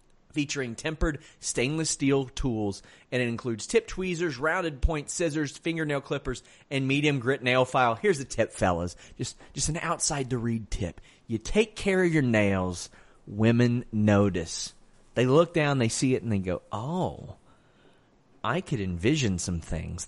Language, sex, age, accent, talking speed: English, male, 30-49, American, 155 wpm